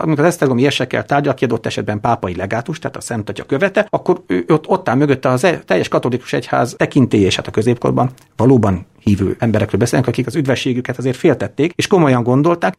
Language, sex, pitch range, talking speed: Hungarian, male, 110-145 Hz, 185 wpm